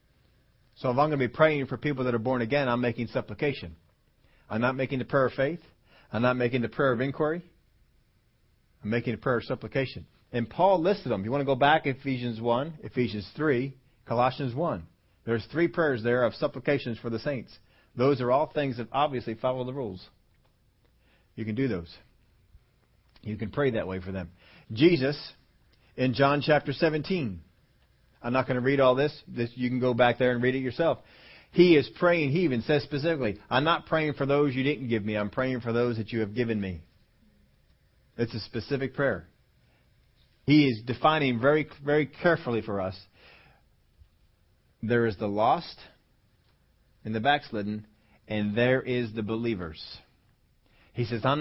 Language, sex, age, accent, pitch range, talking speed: English, male, 40-59, American, 110-140 Hz, 180 wpm